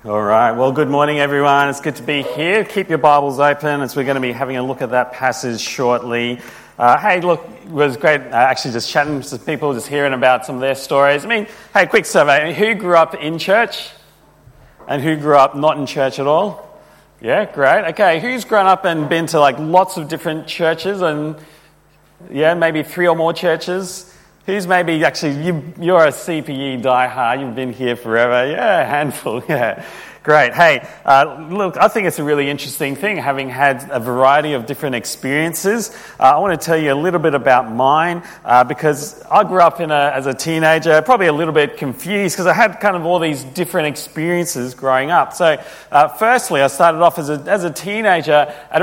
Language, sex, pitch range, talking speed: English, male, 140-170 Hz, 210 wpm